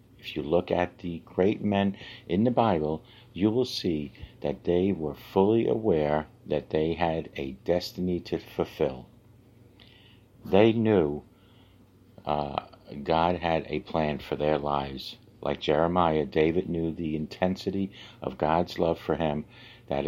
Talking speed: 140 wpm